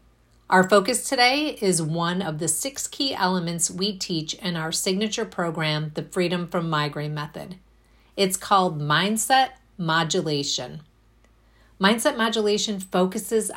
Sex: female